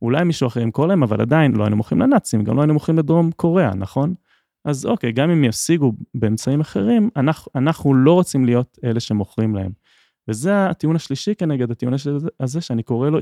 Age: 20-39